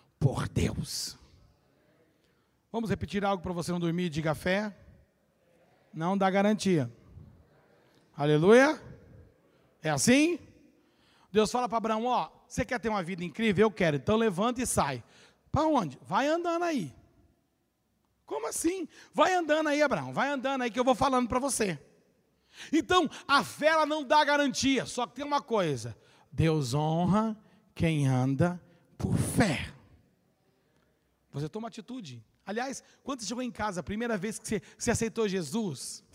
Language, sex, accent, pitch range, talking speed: Portuguese, male, Brazilian, 175-260 Hz, 155 wpm